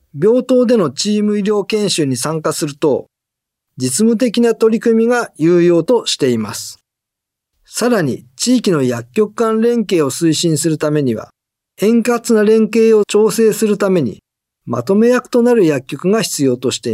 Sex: male